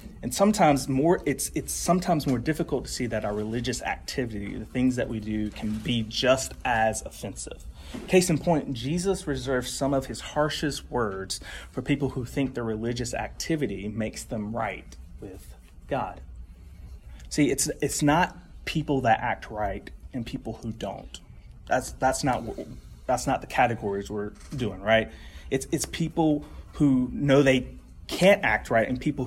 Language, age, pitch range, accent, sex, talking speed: English, 30-49, 105-145 Hz, American, male, 160 wpm